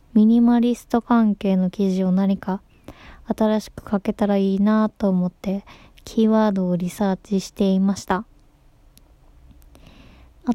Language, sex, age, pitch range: Japanese, female, 20-39, 195-230 Hz